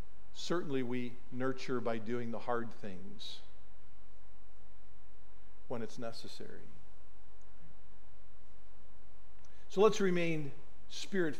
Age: 50-69